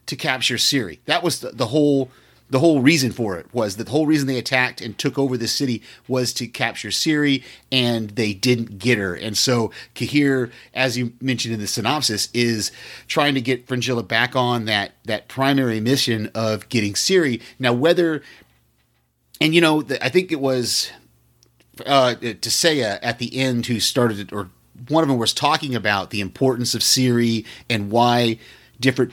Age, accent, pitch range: 30-49, American, 110-135 Hz